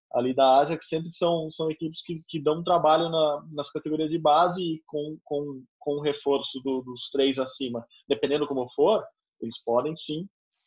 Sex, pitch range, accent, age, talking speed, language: male, 130-155 Hz, Brazilian, 20-39, 185 wpm, Portuguese